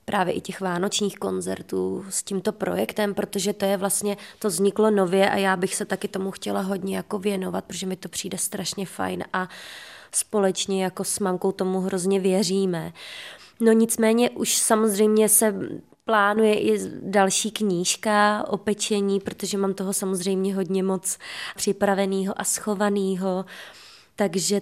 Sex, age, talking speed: female, 20-39, 145 wpm